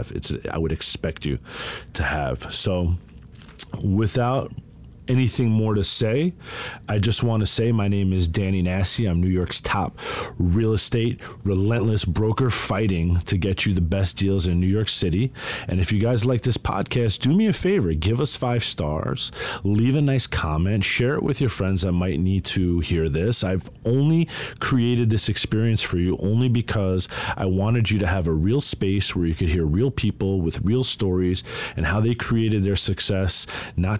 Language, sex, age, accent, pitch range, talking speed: English, male, 40-59, American, 95-115 Hz, 185 wpm